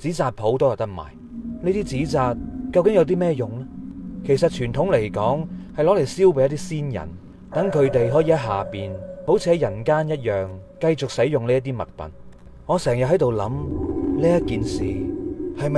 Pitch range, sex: 115-165 Hz, male